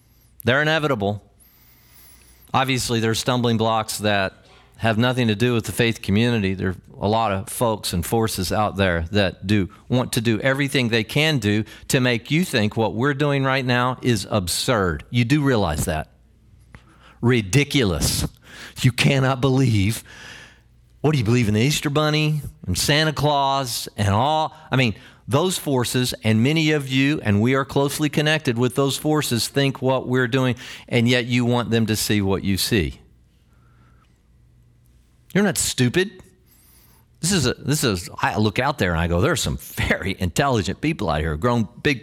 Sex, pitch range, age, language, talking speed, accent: male, 100-140 Hz, 40-59, English, 175 wpm, American